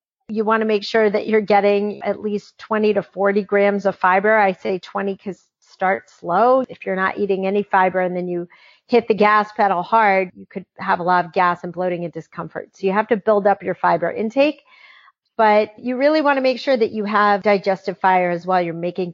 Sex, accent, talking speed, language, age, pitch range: female, American, 225 wpm, English, 40-59, 185-220 Hz